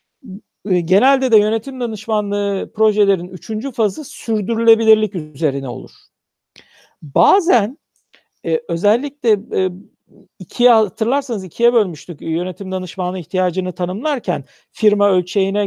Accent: native